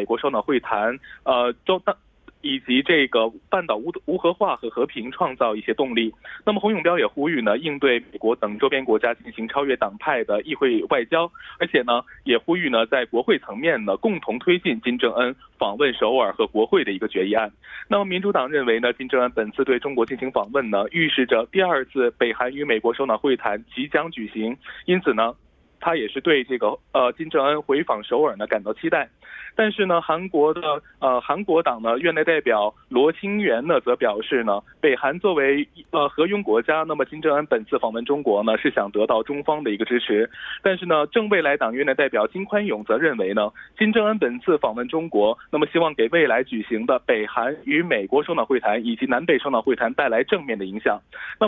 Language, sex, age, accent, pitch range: Korean, male, 20-39, Chinese, 120-200 Hz